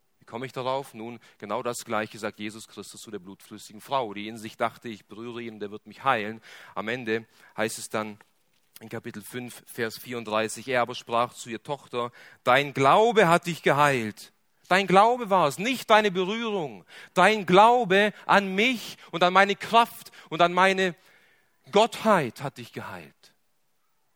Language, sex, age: German, male, 40-59